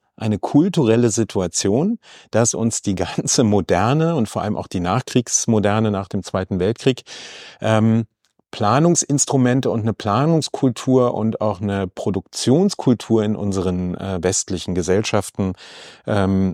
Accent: German